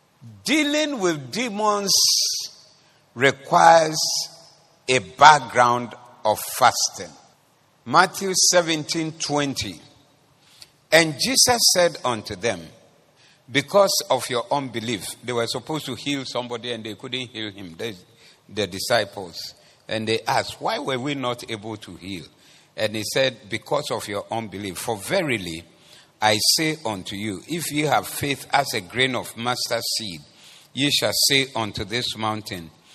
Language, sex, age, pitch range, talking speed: English, male, 50-69, 110-155 Hz, 130 wpm